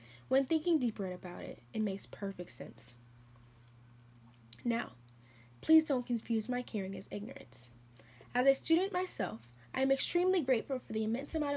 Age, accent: 10-29, American